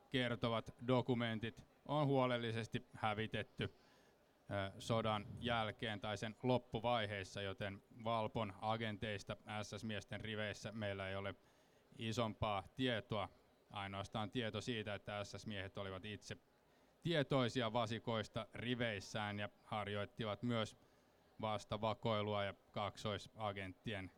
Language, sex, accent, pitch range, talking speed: Finnish, male, native, 105-120 Hz, 90 wpm